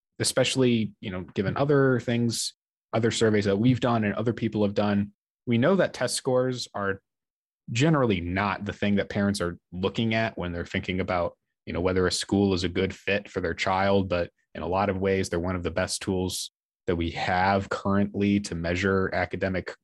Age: 20-39